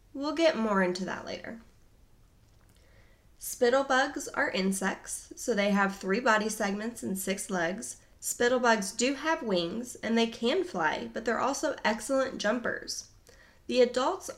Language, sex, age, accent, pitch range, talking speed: English, female, 20-39, American, 180-245 Hz, 140 wpm